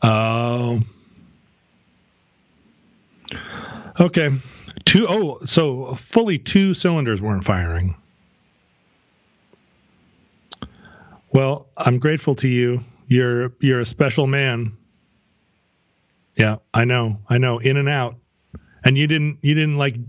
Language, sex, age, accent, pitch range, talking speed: English, male, 40-59, American, 100-140 Hz, 105 wpm